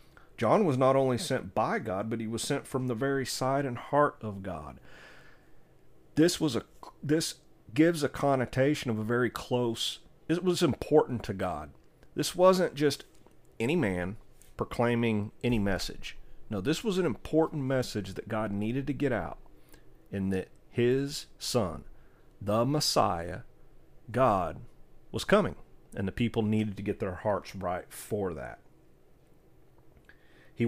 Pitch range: 100-135 Hz